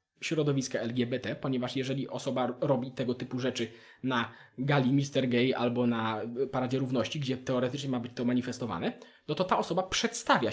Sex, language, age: male, Polish, 20-39